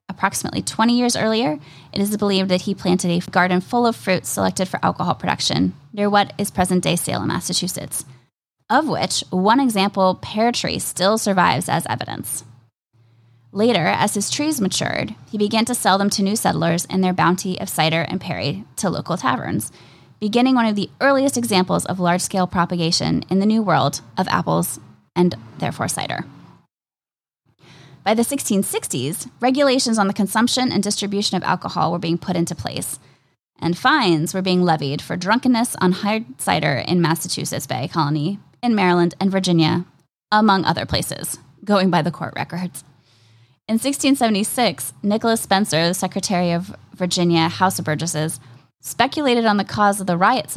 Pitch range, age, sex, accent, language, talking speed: 155-205 Hz, 10-29, female, American, English, 165 wpm